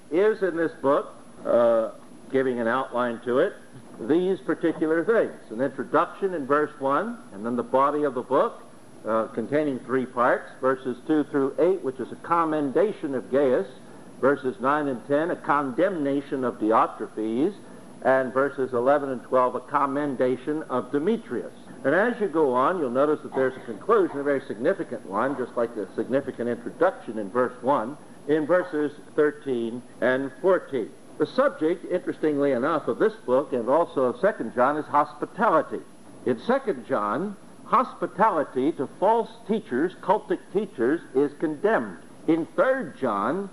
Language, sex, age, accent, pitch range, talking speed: English, male, 60-79, American, 130-180 Hz, 155 wpm